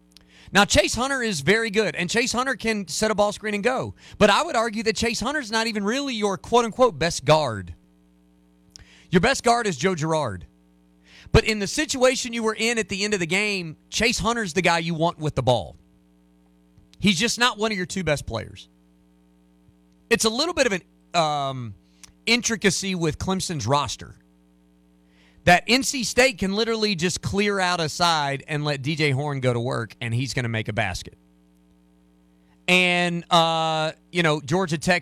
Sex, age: male, 30-49